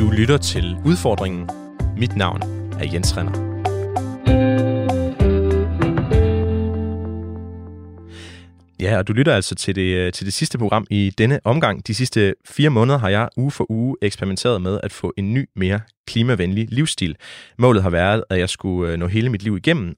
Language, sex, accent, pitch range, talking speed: Danish, male, native, 95-120 Hz, 155 wpm